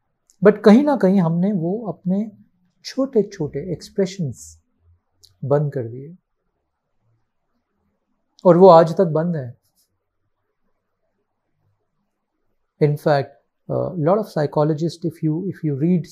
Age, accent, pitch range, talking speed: 50-69, native, 140-195 Hz, 105 wpm